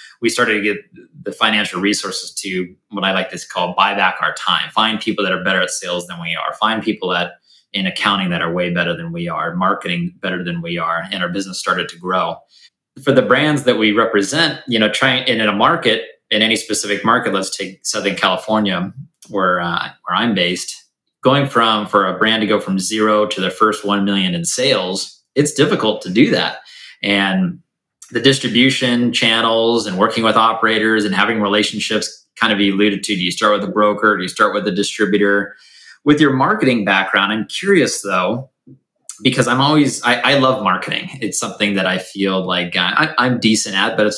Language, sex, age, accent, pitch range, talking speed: English, male, 20-39, American, 95-125 Hz, 205 wpm